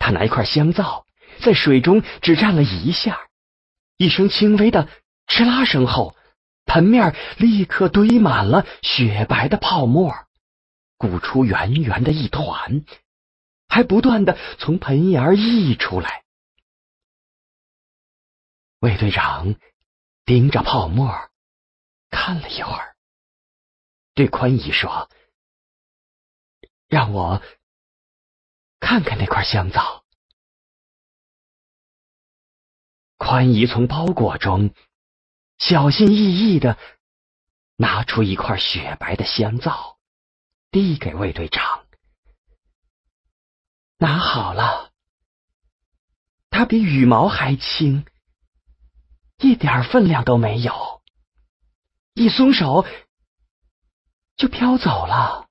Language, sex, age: English, male, 40-59